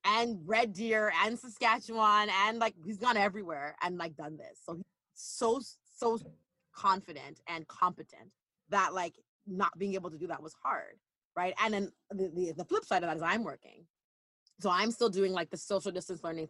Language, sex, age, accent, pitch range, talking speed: English, female, 20-39, American, 165-210 Hz, 195 wpm